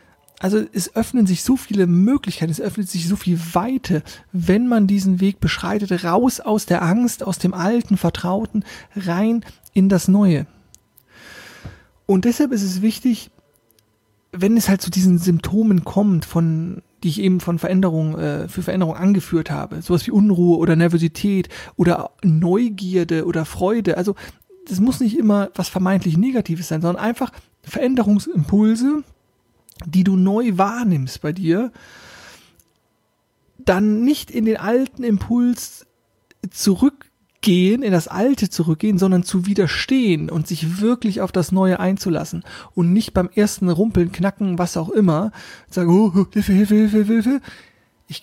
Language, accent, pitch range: German, German, 175-210 Hz